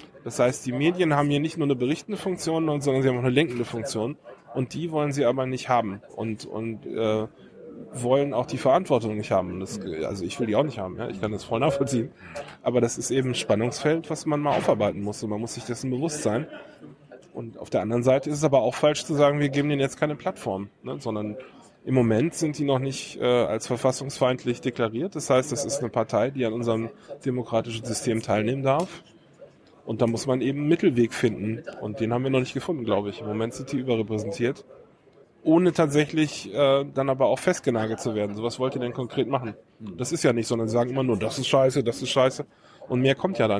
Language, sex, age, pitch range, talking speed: German, male, 10-29, 115-140 Hz, 230 wpm